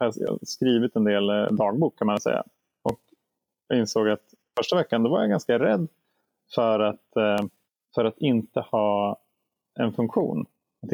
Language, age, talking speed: Swedish, 30-49, 160 wpm